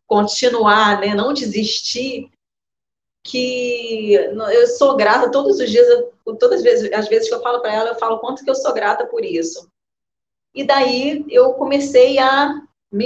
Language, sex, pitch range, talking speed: Portuguese, female, 195-285 Hz, 170 wpm